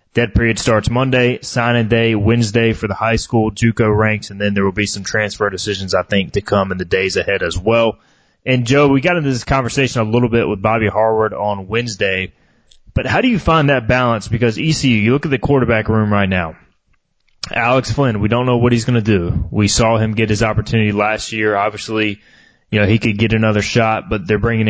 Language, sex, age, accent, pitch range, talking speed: English, male, 20-39, American, 105-120 Hz, 225 wpm